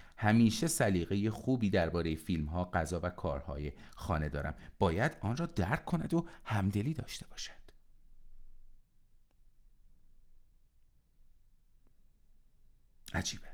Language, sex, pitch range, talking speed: Persian, male, 80-110 Hz, 90 wpm